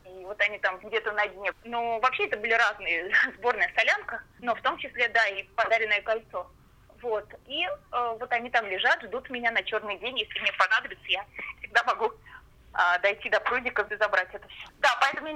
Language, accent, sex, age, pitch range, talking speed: Russian, native, female, 20-39, 200-250 Hz, 195 wpm